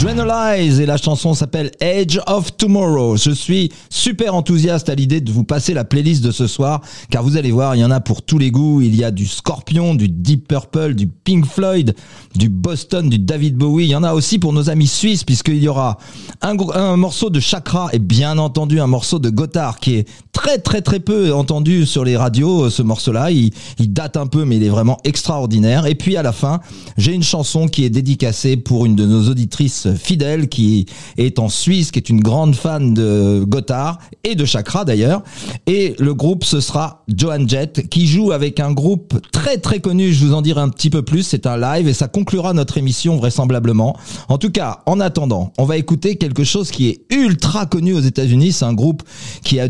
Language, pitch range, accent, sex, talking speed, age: French, 120-165 Hz, French, male, 220 wpm, 40-59